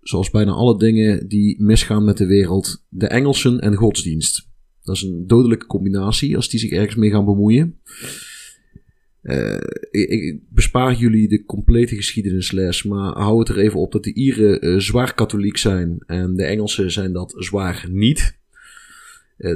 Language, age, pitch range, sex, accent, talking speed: Dutch, 30-49, 95-115 Hz, male, Dutch, 165 wpm